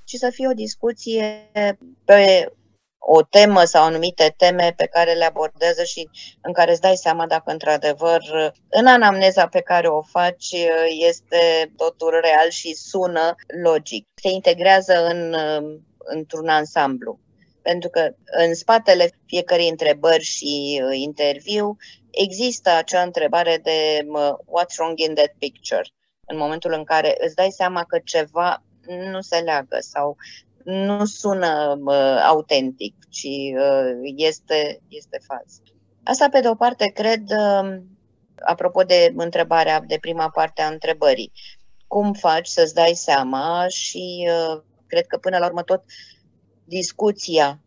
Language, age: Romanian, 20-39